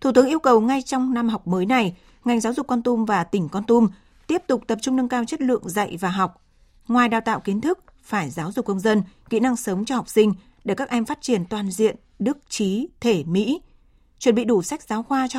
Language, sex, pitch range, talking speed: Vietnamese, female, 195-245 Hz, 250 wpm